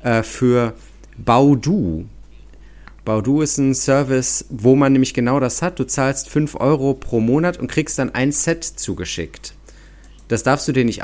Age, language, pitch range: 40-59, German, 110-145 Hz